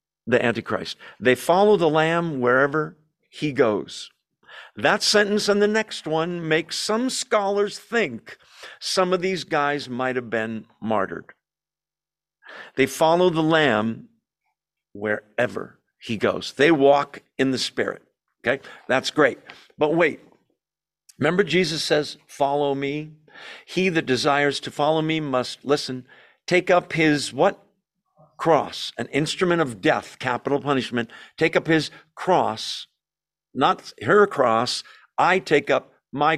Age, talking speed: 50-69, 130 wpm